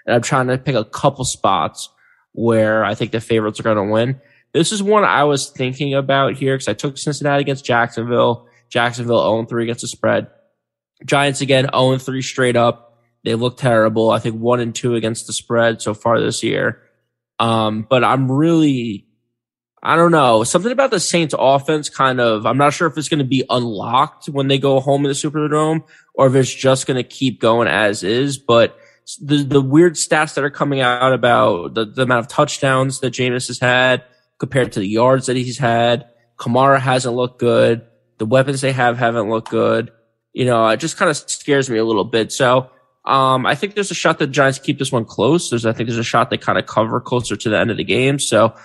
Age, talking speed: 20-39, 215 wpm